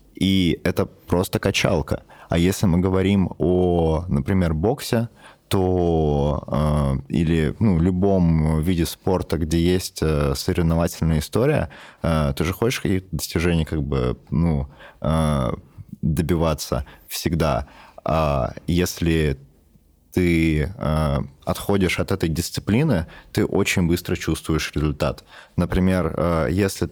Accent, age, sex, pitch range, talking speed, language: native, 20-39, male, 80-95 Hz, 105 wpm, Russian